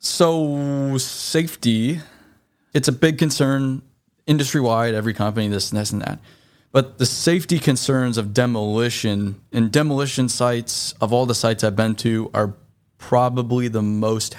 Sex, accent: male, American